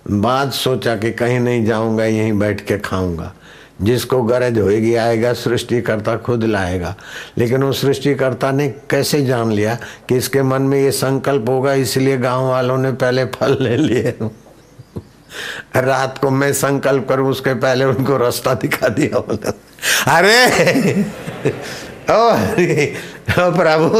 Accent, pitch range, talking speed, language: native, 105-135 Hz, 140 wpm, Hindi